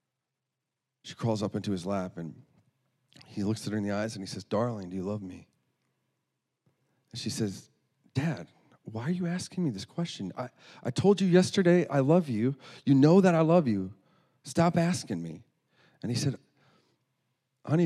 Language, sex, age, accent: English, male, 40-59, American